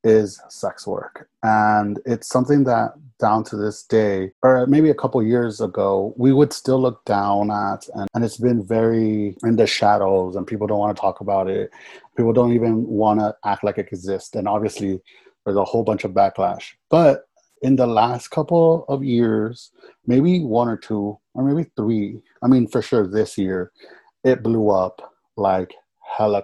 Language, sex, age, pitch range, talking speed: English, male, 30-49, 100-115 Hz, 185 wpm